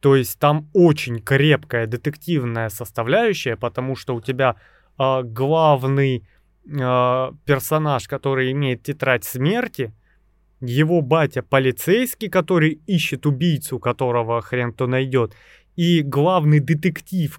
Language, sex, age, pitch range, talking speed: Russian, male, 20-39, 120-155 Hz, 105 wpm